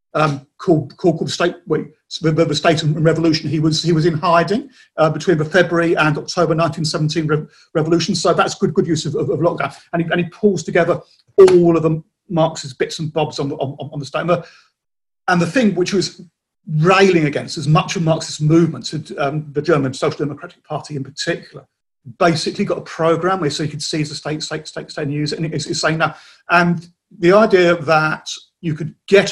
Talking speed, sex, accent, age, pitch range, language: 215 wpm, male, British, 40-59, 155-175 Hz, English